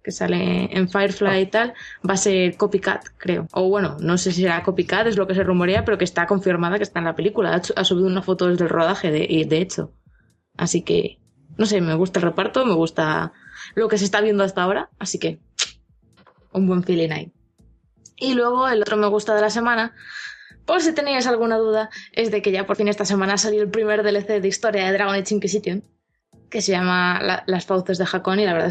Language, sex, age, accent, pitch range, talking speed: Spanish, female, 20-39, Spanish, 180-205 Hz, 225 wpm